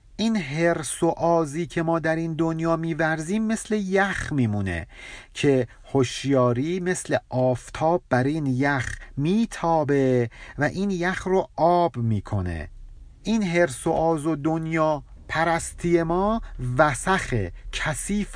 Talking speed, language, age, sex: 125 wpm, Persian, 50-69, male